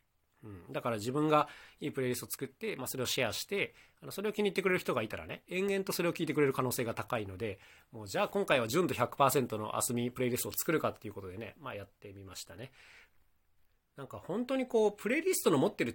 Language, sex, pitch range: Japanese, male, 110-170 Hz